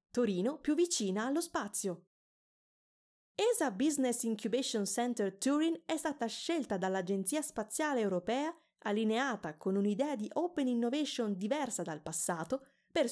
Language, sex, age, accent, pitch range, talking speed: Italian, female, 20-39, native, 195-315 Hz, 120 wpm